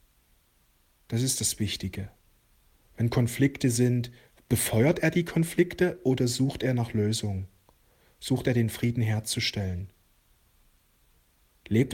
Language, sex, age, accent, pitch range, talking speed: German, male, 40-59, German, 105-135 Hz, 110 wpm